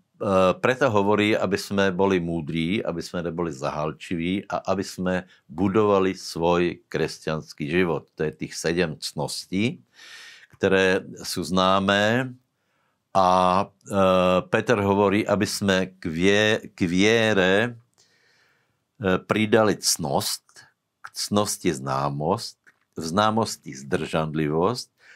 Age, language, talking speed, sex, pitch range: 60-79, Slovak, 100 wpm, male, 90-105 Hz